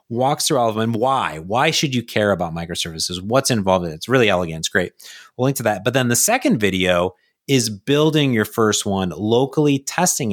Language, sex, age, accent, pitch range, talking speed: English, male, 30-49, American, 95-130 Hz, 215 wpm